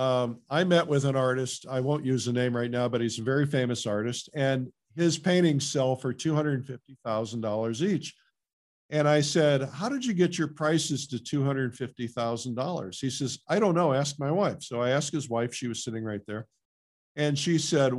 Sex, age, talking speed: male, 50-69, 195 wpm